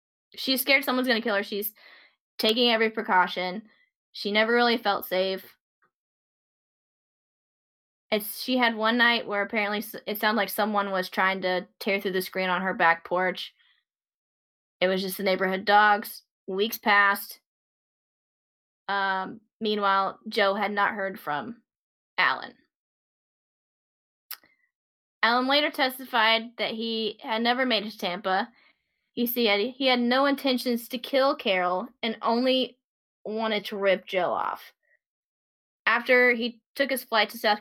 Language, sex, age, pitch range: English, female, 10-29, 195-235 Hz